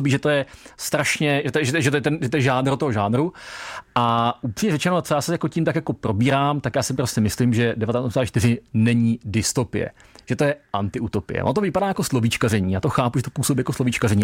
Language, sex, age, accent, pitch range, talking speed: Czech, male, 40-59, native, 115-145 Hz, 230 wpm